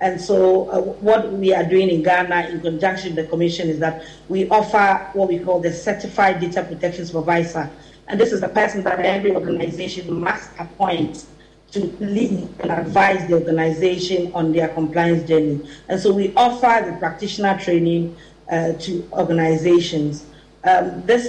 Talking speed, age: 165 wpm, 40-59